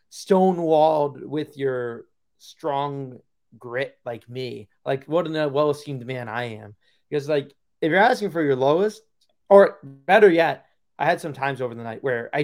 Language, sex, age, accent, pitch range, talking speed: English, male, 30-49, American, 120-160 Hz, 170 wpm